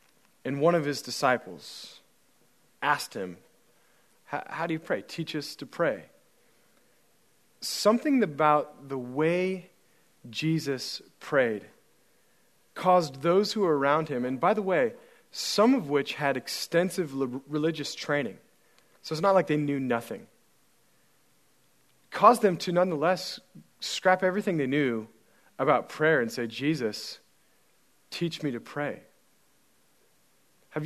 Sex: male